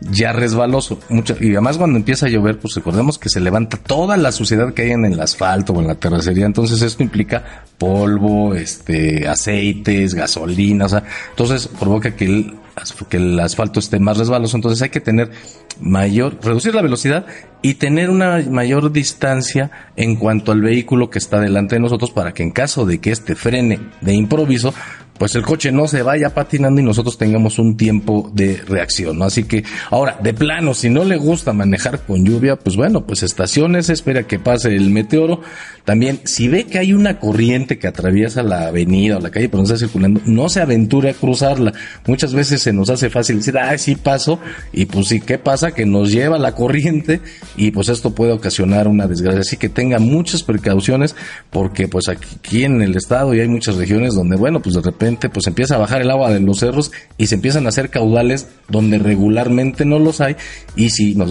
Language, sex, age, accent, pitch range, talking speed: Spanish, male, 40-59, Mexican, 100-135 Hz, 200 wpm